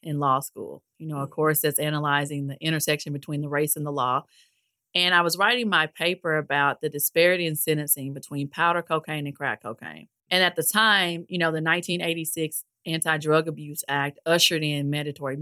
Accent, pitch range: American, 145-175 Hz